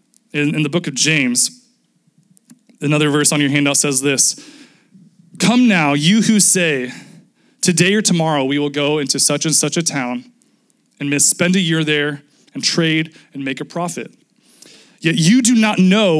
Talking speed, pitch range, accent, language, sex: 165 wpm, 145-210 Hz, American, English, male